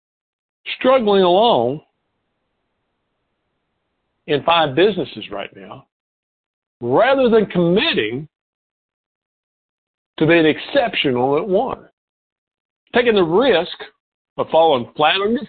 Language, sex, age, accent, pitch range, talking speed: English, male, 60-79, American, 140-195 Hz, 90 wpm